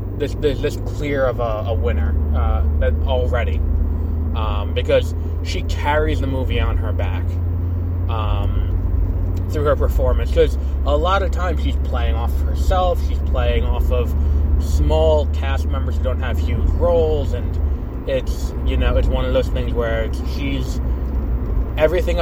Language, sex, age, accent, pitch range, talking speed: English, male, 20-39, American, 65-80 Hz, 150 wpm